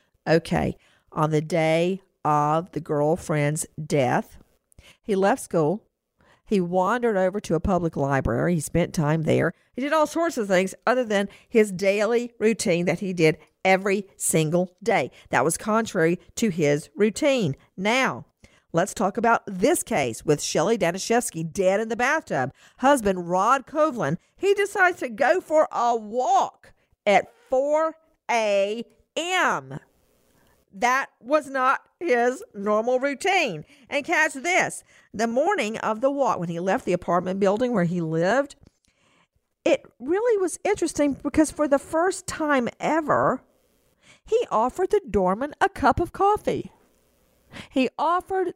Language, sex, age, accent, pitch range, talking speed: English, female, 50-69, American, 180-285 Hz, 140 wpm